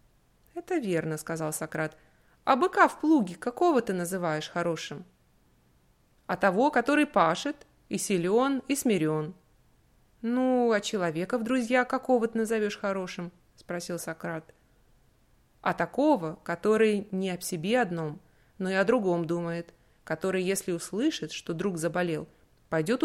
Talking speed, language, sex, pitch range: 135 wpm, English, female, 165-240 Hz